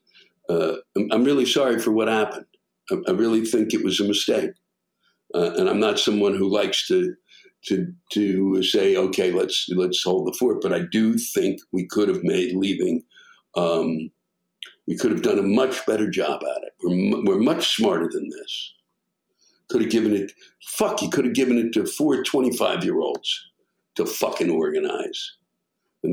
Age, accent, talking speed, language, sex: 60-79, American, 170 wpm, English, male